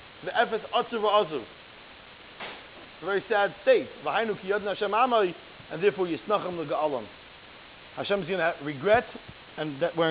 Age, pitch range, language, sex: 30-49, 195-235 Hz, English, male